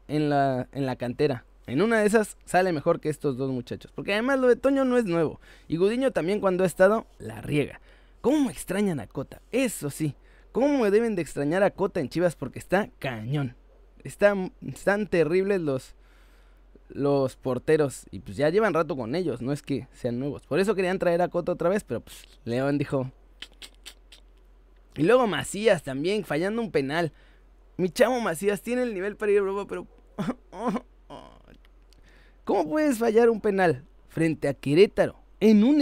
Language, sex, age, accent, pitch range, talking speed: Spanish, male, 20-39, Mexican, 145-215 Hz, 180 wpm